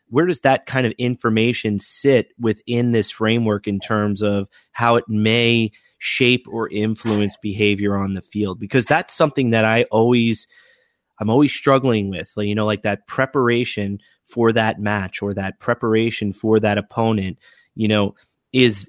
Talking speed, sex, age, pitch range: 160 wpm, male, 30-49, 105-125 Hz